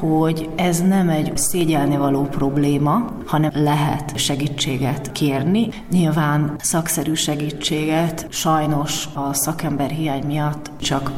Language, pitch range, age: Hungarian, 145-170 Hz, 30-49